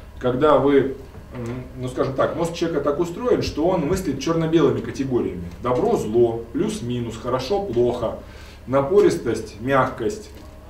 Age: 20-39